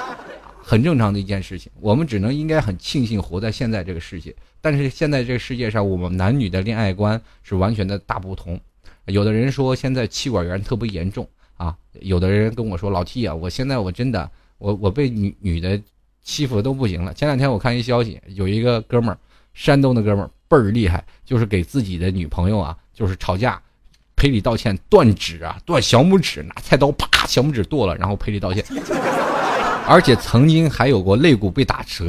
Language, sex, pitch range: Chinese, male, 95-130 Hz